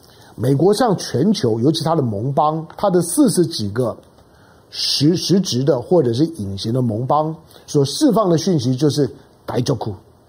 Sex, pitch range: male, 135-200 Hz